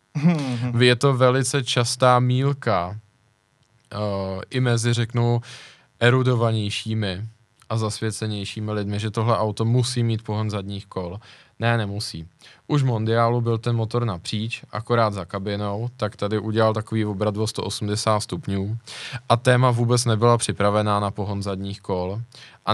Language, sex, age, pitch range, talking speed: Czech, male, 20-39, 100-120 Hz, 130 wpm